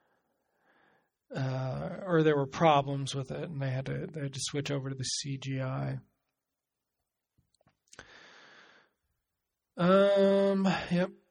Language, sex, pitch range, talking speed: English, male, 140-170 Hz, 120 wpm